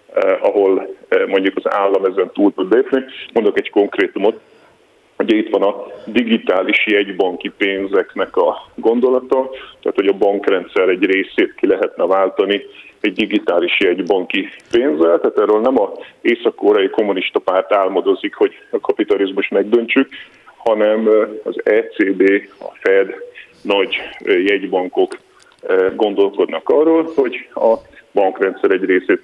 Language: Hungarian